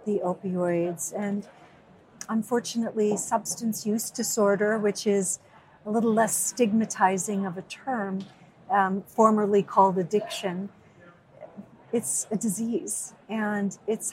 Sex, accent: female, American